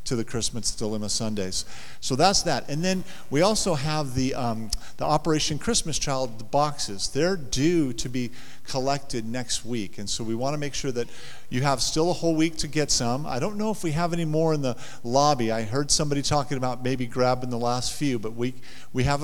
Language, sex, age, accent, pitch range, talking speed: English, male, 50-69, American, 115-160 Hz, 215 wpm